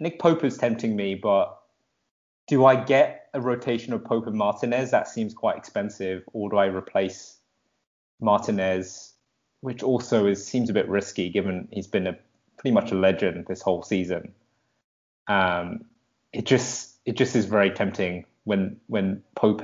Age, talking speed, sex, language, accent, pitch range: 20-39, 160 wpm, male, English, British, 95-115 Hz